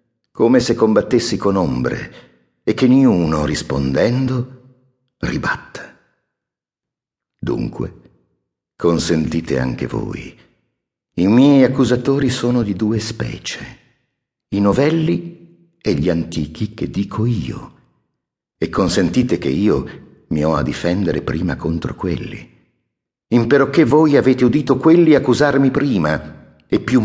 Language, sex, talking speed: Italian, male, 110 wpm